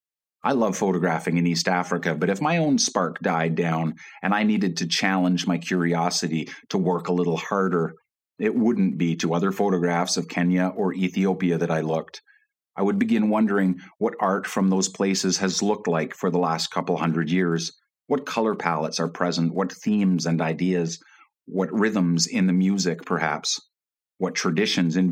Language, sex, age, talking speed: English, male, 40-59, 175 wpm